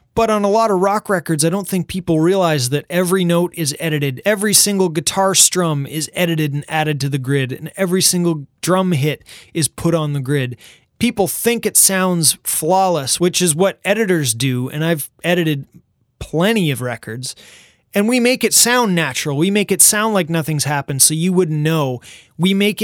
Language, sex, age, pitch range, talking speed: English, male, 20-39, 150-190 Hz, 190 wpm